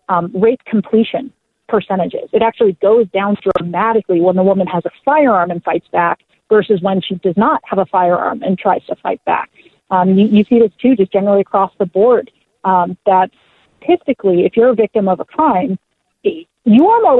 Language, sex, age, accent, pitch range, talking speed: English, female, 40-59, American, 190-240 Hz, 190 wpm